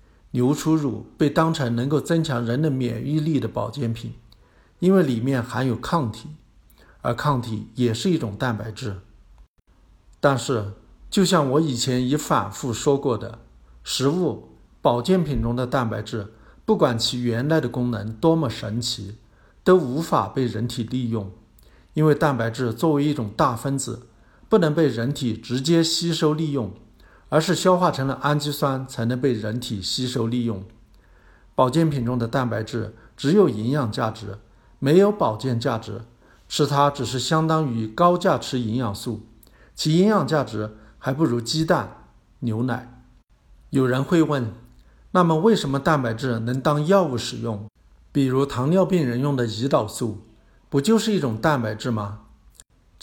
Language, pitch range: Chinese, 110-150 Hz